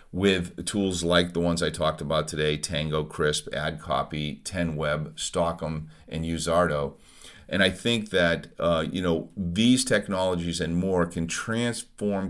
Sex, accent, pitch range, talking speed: male, American, 85-100 Hz, 140 wpm